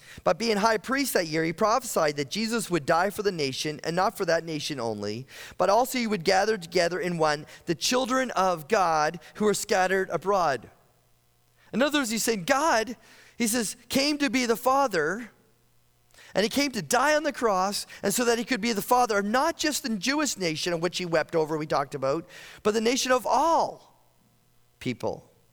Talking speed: 195 wpm